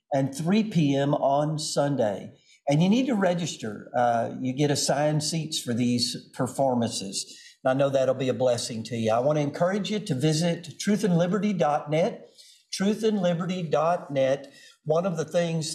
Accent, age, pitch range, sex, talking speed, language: American, 50-69, 135-170 Hz, male, 150 wpm, English